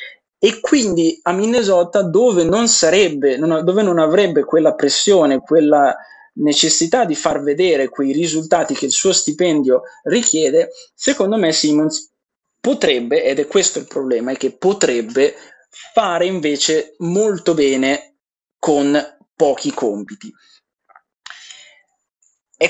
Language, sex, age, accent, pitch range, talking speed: Italian, male, 20-39, native, 145-195 Hz, 115 wpm